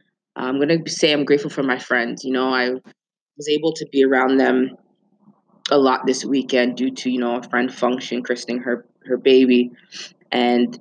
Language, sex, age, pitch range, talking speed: English, female, 20-39, 125-145 Hz, 185 wpm